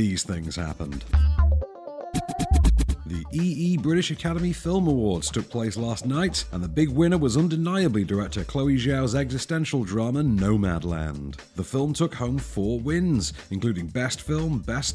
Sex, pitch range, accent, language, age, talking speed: male, 95-145 Hz, British, English, 40-59, 140 wpm